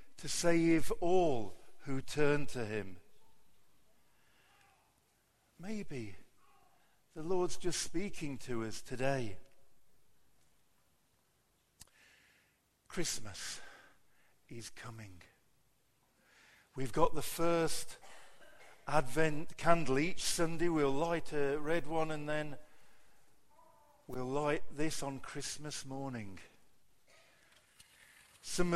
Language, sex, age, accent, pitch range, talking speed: English, male, 50-69, British, 135-170 Hz, 85 wpm